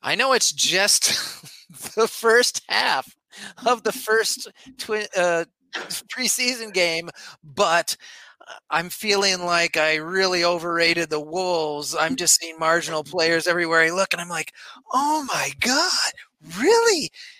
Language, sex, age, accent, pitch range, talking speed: English, male, 30-49, American, 140-215 Hz, 130 wpm